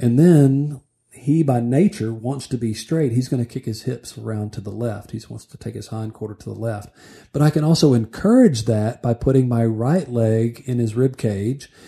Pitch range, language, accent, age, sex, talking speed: 110-140 Hz, English, American, 40-59, male, 220 wpm